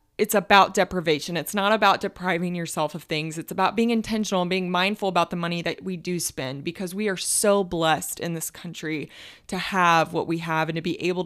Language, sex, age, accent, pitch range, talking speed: English, female, 20-39, American, 170-215 Hz, 220 wpm